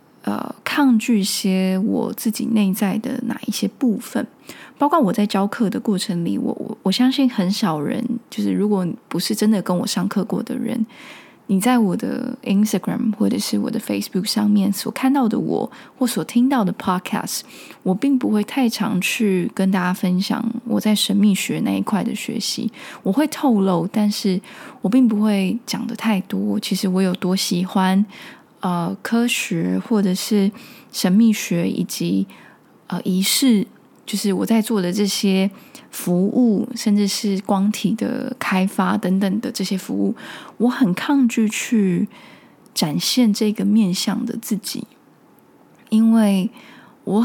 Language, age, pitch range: Chinese, 20-39, 195-240 Hz